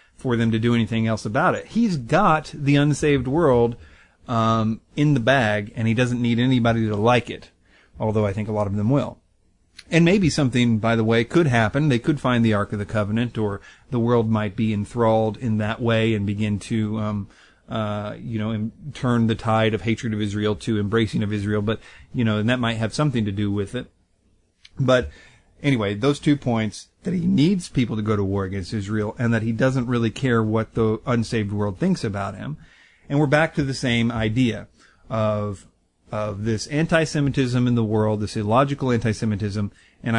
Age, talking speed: 40-59, 200 wpm